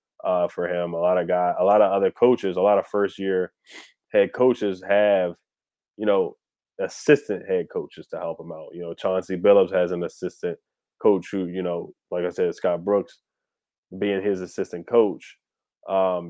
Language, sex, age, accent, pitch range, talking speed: English, male, 20-39, American, 90-115 Hz, 185 wpm